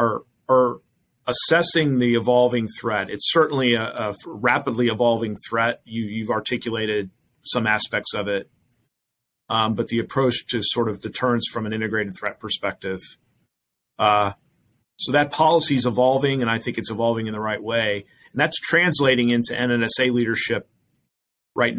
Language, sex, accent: English, male, American